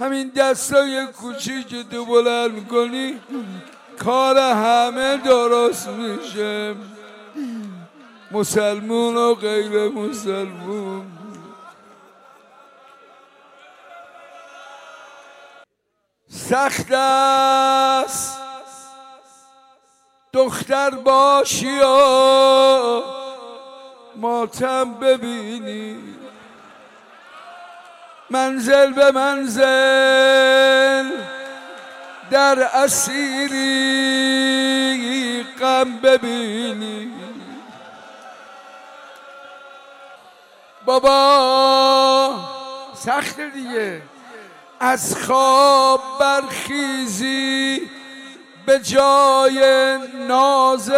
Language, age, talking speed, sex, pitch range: Persian, 60-79, 40 wpm, male, 245-270 Hz